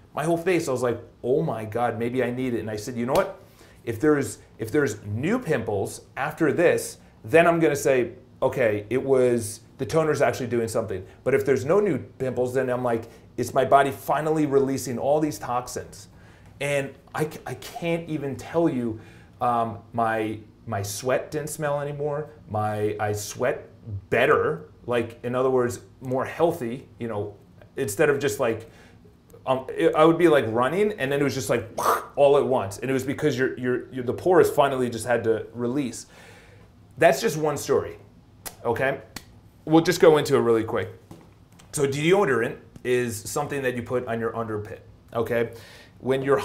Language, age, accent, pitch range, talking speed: English, 30-49, American, 115-150 Hz, 180 wpm